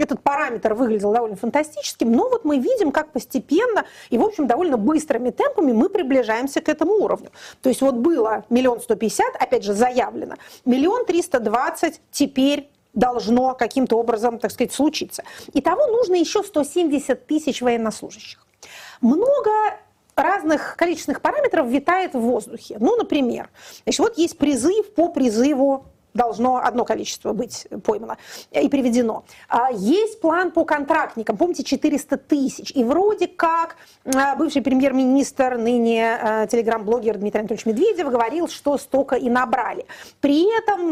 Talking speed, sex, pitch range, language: 135 wpm, female, 235-315 Hz, Russian